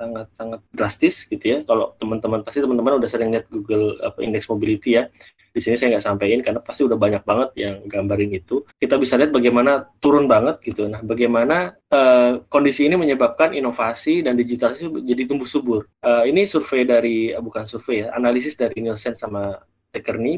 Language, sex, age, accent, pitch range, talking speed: Indonesian, male, 20-39, native, 110-140 Hz, 175 wpm